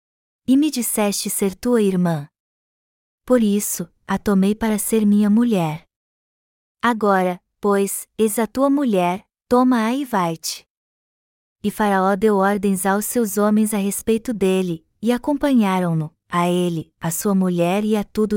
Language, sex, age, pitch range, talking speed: Portuguese, female, 20-39, 190-225 Hz, 140 wpm